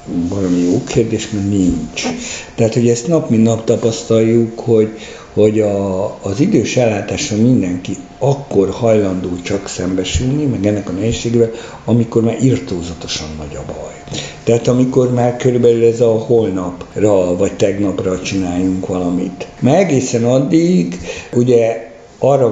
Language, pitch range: Hungarian, 95-115 Hz